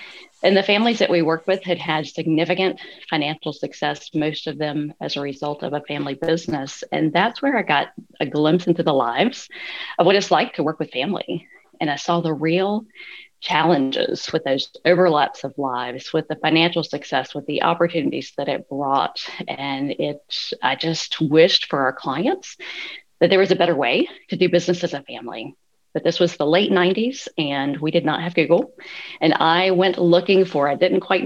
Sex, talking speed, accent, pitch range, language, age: female, 195 wpm, American, 145-180 Hz, English, 40-59